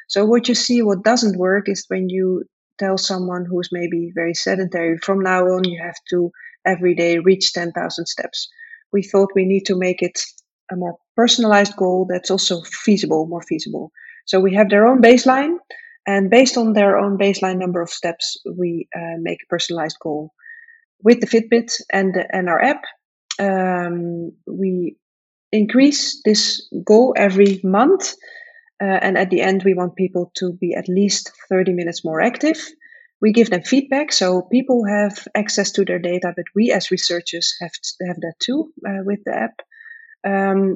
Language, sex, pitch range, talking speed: English, female, 180-230 Hz, 180 wpm